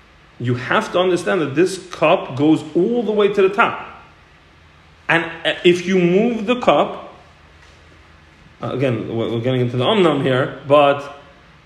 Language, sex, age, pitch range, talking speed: English, male, 40-59, 165-255 Hz, 145 wpm